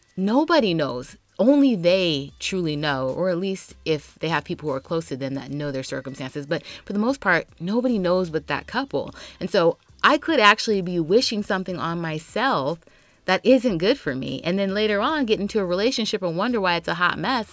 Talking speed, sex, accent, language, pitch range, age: 210 wpm, female, American, English, 145-195 Hz, 30-49